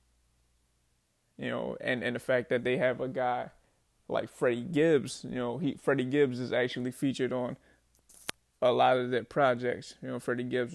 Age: 20-39